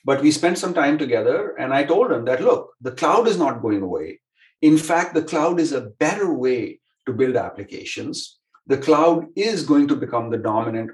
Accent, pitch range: Indian, 115-160 Hz